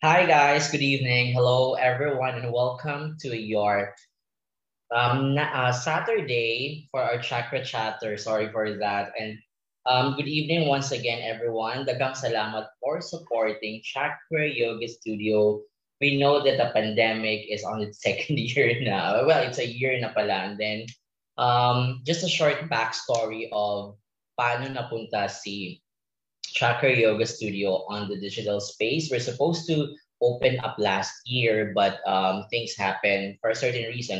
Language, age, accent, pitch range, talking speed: English, 20-39, Filipino, 105-130 Hz, 145 wpm